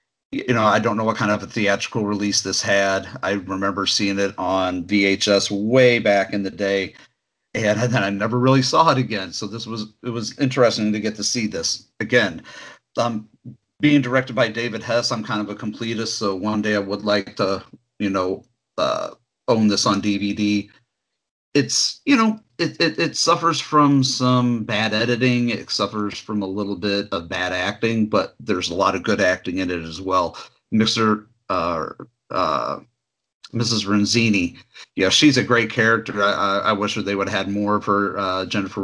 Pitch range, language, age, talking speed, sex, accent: 100-125 Hz, English, 40-59, 190 wpm, male, American